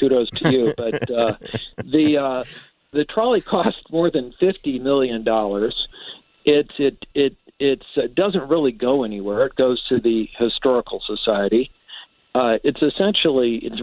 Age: 50-69